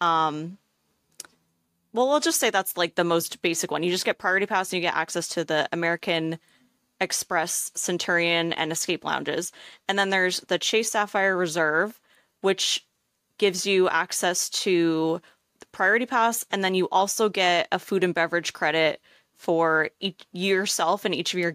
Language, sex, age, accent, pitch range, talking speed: English, female, 20-39, American, 165-195 Hz, 165 wpm